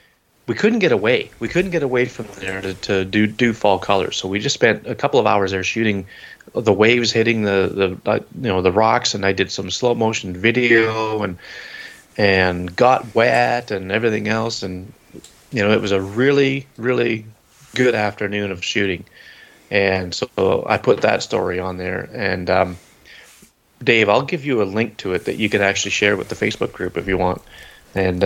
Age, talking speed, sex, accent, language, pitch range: 30-49, 195 wpm, male, American, English, 95-110 Hz